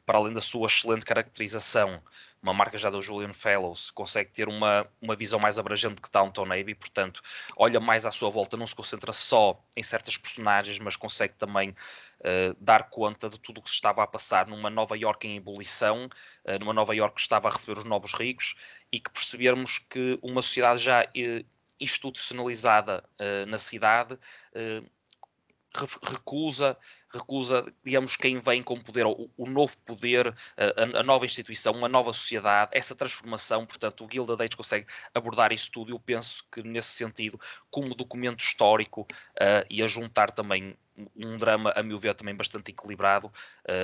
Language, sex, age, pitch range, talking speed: Portuguese, male, 20-39, 105-120 Hz, 170 wpm